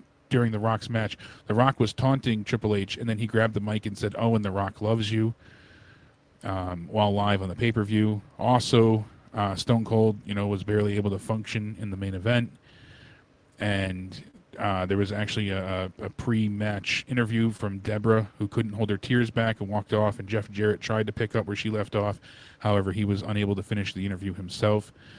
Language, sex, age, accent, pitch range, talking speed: English, male, 30-49, American, 100-115 Hz, 200 wpm